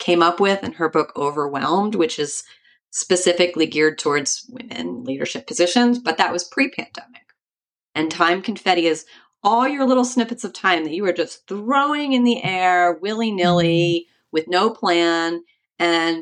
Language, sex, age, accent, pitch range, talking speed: English, female, 30-49, American, 150-195 Hz, 160 wpm